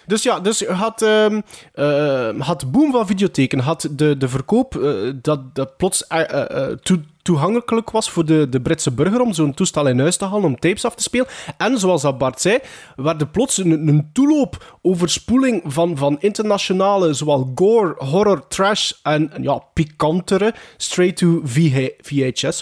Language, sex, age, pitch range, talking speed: Dutch, male, 20-39, 145-200 Hz, 165 wpm